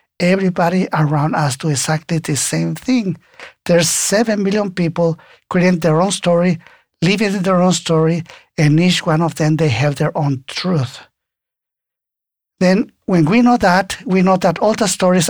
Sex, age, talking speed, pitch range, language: male, 50-69, 165 wpm, 150-185 Hz, English